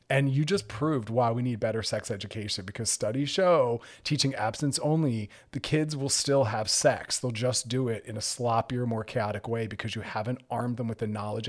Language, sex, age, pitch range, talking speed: English, male, 30-49, 115-150 Hz, 210 wpm